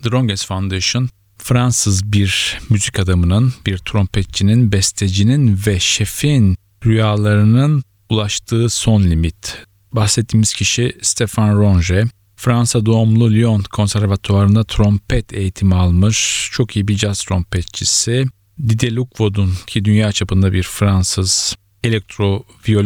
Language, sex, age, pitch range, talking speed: Turkish, male, 40-59, 100-115 Hz, 100 wpm